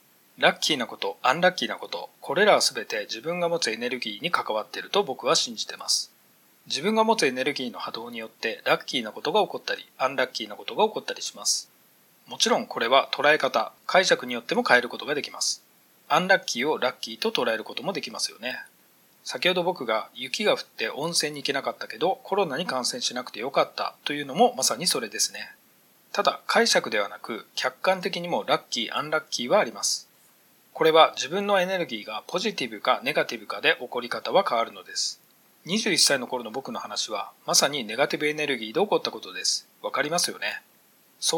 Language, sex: Japanese, male